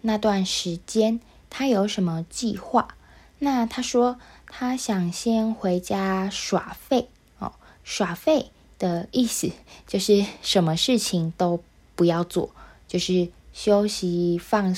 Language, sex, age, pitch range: Chinese, female, 20-39, 175-230 Hz